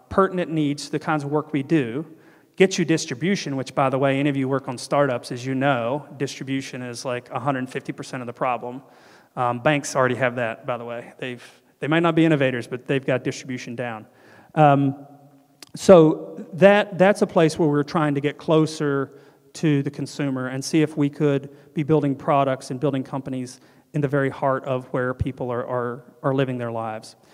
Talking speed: 200 wpm